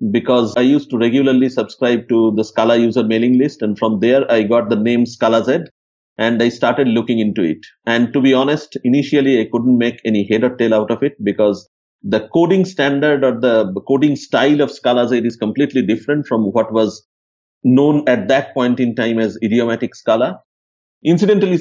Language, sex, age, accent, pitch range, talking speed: English, male, 50-69, Indian, 115-140 Hz, 190 wpm